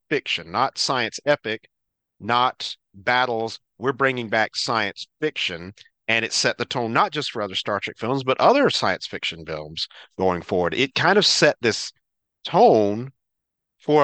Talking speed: 160 wpm